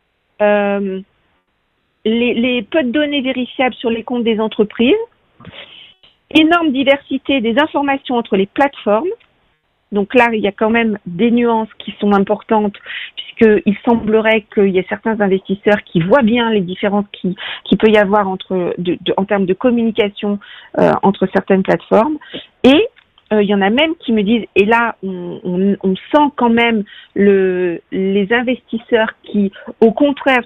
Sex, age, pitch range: female, 50-69, 205-265 Hz